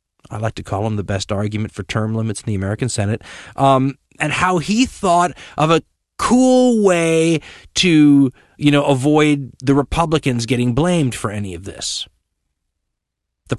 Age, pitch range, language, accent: 30-49, 110-175 Hz, English, American